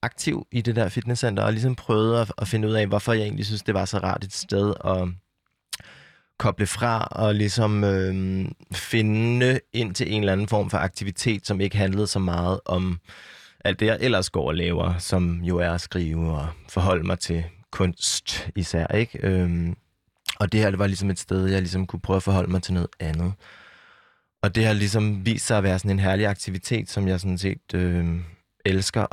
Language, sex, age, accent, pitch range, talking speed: Danish, male, 20-39, native, 90-105 Hz, 200 wpm